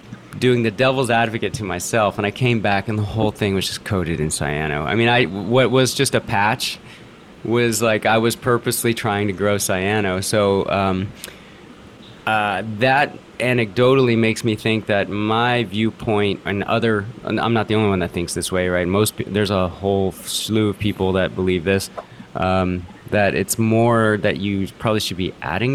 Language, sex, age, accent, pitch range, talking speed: English, male, 30-49, American, 95-115 Hz, 185 wpm